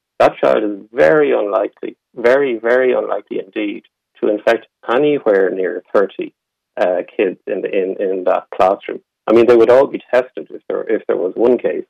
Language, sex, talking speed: English, male, 180 wpm